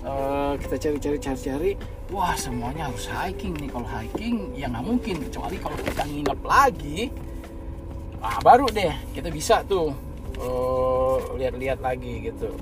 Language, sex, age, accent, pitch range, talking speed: Indonesian, male, 20-39, native, 80-120 Hz, 135 wpm